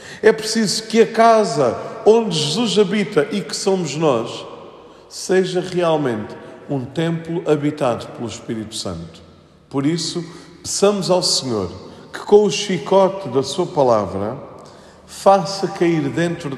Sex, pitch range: male, 155-190 Hz